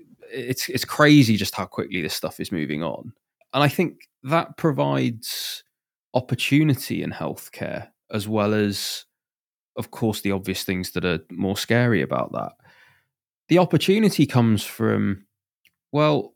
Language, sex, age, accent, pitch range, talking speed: English, male, 20-39, British, 95-125 Hz, 140 wpm